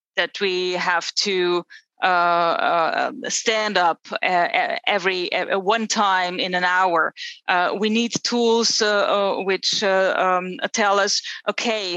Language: English